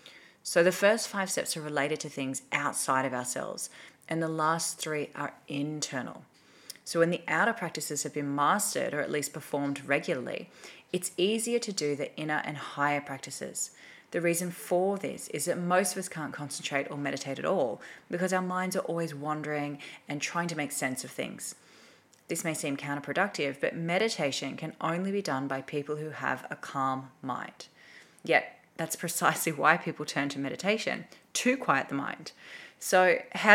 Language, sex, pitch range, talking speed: English, female, 145-180 Hz, 175 wpm